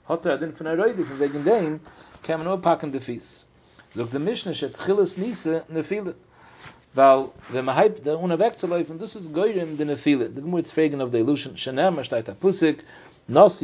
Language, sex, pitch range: English, male, 130-170 Hz